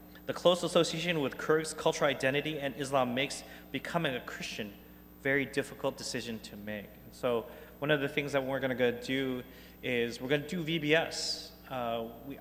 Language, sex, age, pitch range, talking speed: English, male, 30-49, 120-155 Hz, 175 wpm